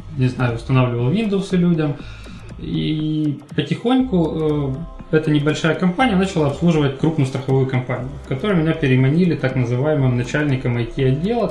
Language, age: Russian, 20-39